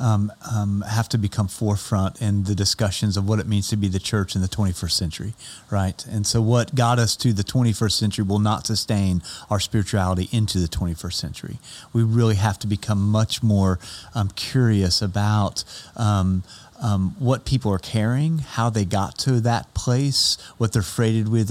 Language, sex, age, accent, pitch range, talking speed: English, male, 30-49, American, 100-120 Hz, 185 wpm